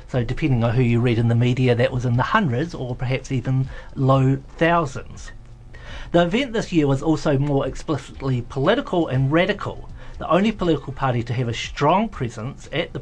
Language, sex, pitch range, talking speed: English, male, 125-160 Hz, 190 wpm